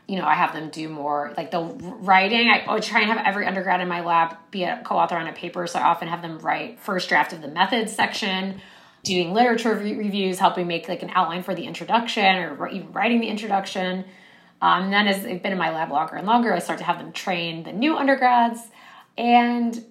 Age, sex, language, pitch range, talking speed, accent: 20-39, female, English, 180-225 Hz, 225 wpm, American